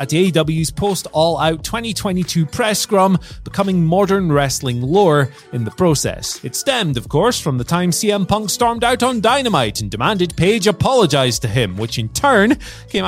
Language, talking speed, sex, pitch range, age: English, 170 wpm, male, 135-200 Hz, 30-49